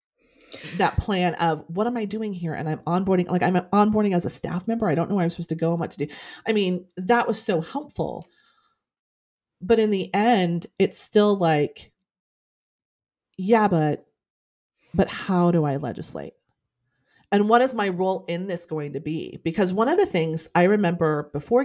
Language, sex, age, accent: English, female, 30-49, American